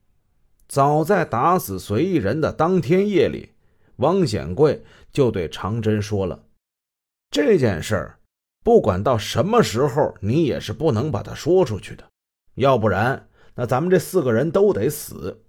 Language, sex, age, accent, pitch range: Chinese, male, 30-49, native, 105-160 Hz